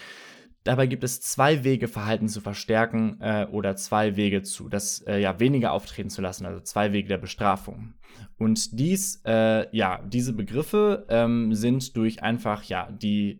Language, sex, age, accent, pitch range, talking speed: German, male, 20-39, German, 100-125 Hz, 165 wpm